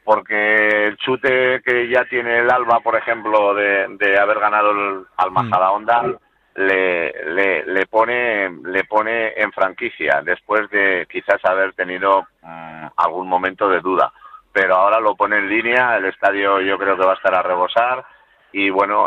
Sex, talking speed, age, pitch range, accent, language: male, 170 wpm, 50-69, 90-105 Hz, Spanish, Spanish